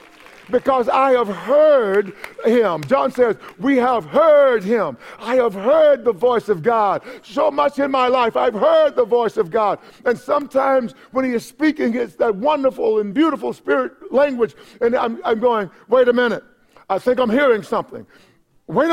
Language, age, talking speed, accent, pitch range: English, 50-69, 175 wpm, American, 215-280 Hz